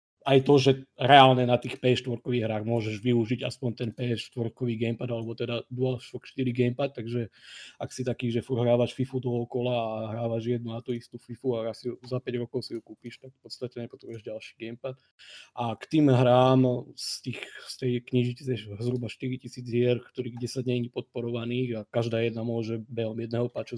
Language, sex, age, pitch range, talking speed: Slovak, male, 20-39, 115-125 Hz, 180 wpm